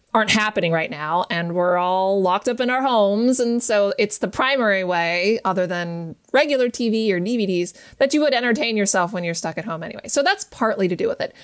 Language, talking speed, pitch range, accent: English, 220 wpm, 185-240 Hz, American